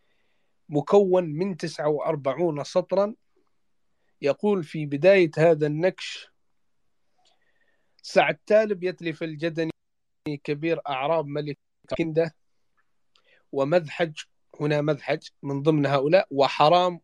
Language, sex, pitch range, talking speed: English, male, 145-175 Hz, 85 wpm